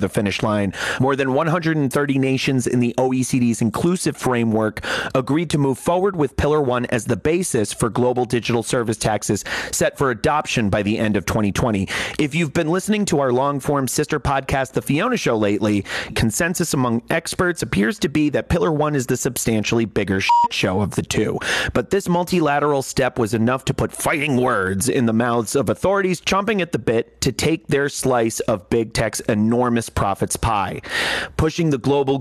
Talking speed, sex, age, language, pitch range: 185 wpm, male, 30-49, English, 115-150 Hz